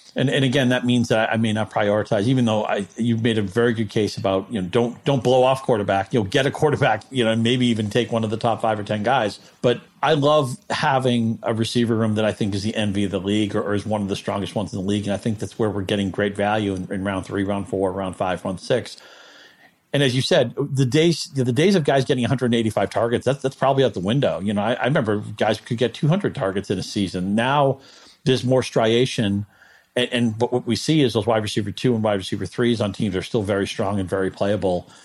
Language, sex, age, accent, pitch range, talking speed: English, male, 40-59, American, 100-125 Hz, 260 wpm